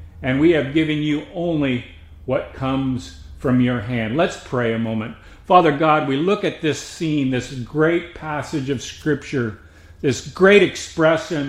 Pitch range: 125-160 Hz